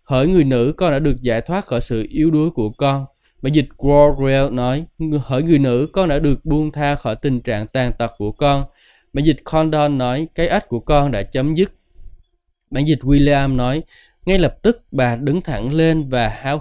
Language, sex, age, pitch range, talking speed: Vietnamese, male, 20-39, 125-155 Hz, 205 wpm